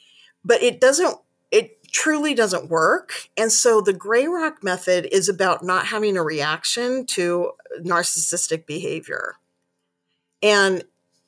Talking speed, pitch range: 120 wpm, 170-220 Hz